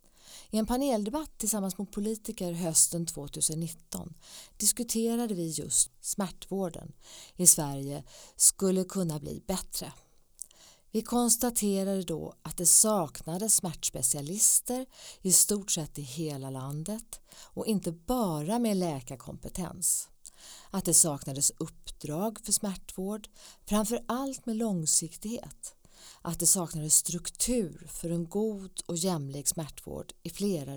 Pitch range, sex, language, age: 155-205 Hz, female, English, 40-59